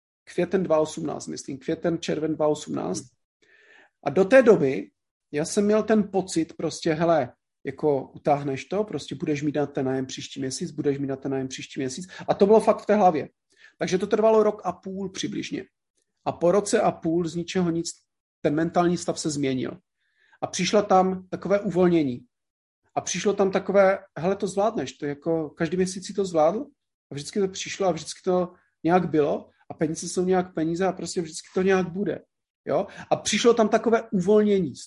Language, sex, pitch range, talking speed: Czech, male, 155-200 Hz, 185 wpm